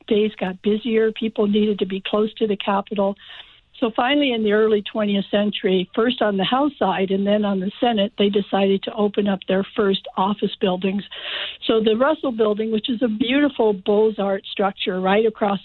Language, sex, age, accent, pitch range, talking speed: English, female, 60-79, American, 200-235 Hz, 190 wpm